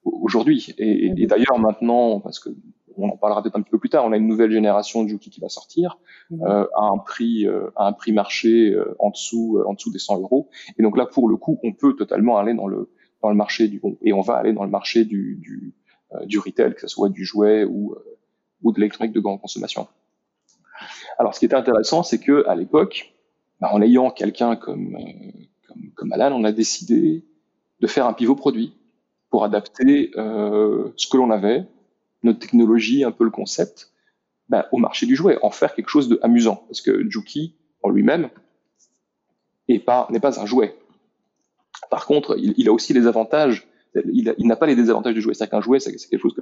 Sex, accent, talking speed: male, French, 220 wpm